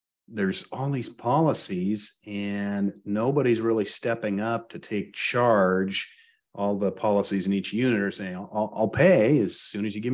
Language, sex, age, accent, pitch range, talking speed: English, male, 40-59, American, 95-120 Hz, 165 wpm